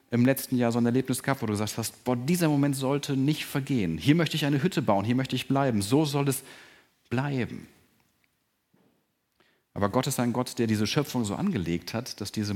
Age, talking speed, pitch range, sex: 40-59, 210 wpm, 105-135 Hz, male